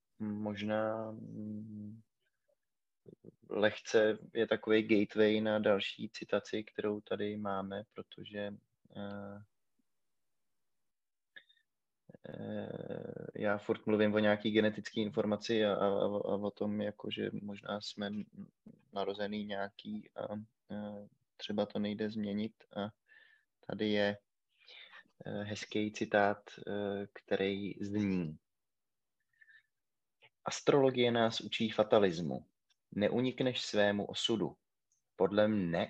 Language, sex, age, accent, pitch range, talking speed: Czech, male, 20-39, native, 100-120 Hz, 85 wpm